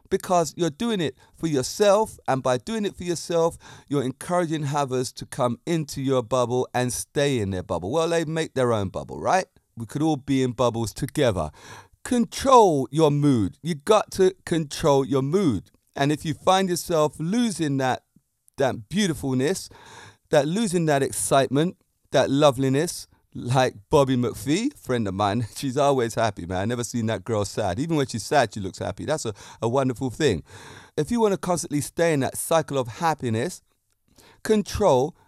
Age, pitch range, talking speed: 30-49, 125-170 Hz, 175 wpm